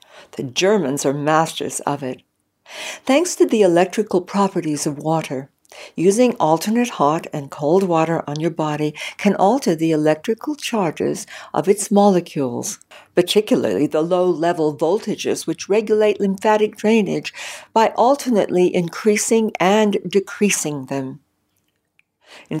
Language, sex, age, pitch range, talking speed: English, female, 60-79, 155-220 Hz, 120 wpm